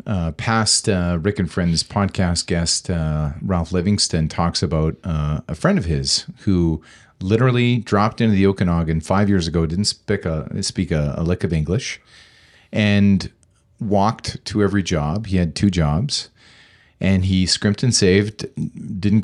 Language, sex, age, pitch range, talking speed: English, male, 40-59, 85-115 Hz, 155 wpm